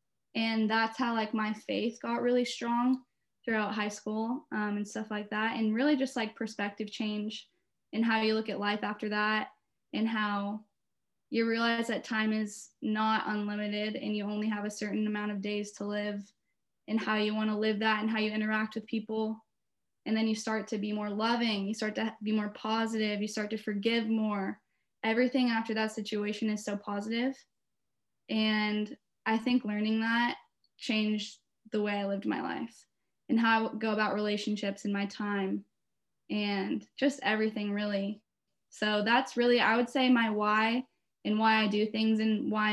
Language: English